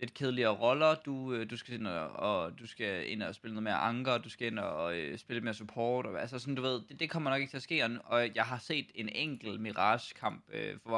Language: Danish